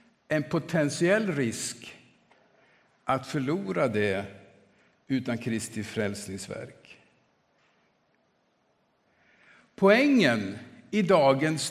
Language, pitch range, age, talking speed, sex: Swedish, 120-175 Hz, 50-69, 60 wpm, male